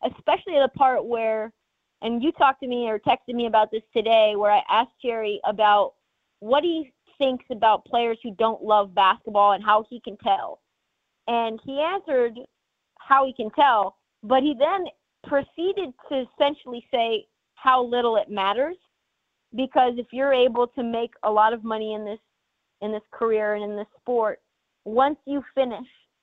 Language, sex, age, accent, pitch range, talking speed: English, female, 30-49, American, 215-255 Hz, 170 wpm